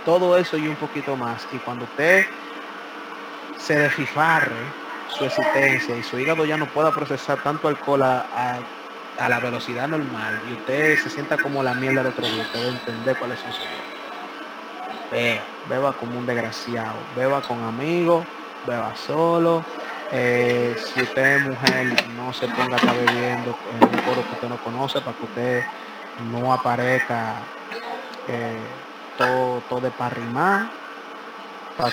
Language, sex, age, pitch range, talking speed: Spanish, male, 20-39, 125-150 Hz, 155 wpm